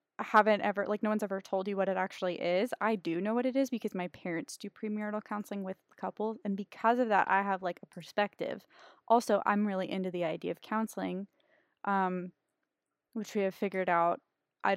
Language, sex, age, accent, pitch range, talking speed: English, female, 20-39, American, 190-250 Hz, 205 wpm